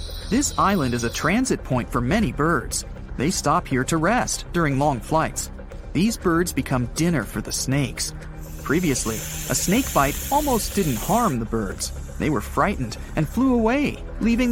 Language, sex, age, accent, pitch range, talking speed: English, male, 40-59, American, 115-185 Hz, 165 wpm